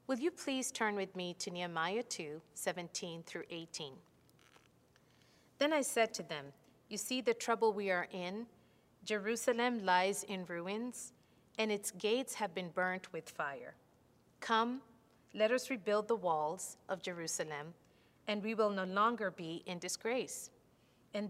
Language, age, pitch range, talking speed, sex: English, 40-59, 180-230 Hz, 150 wpm, female